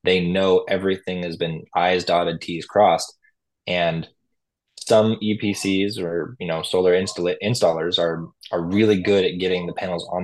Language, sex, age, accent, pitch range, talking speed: English, male, 20-39, American, 85-110 Hz, 150 wpm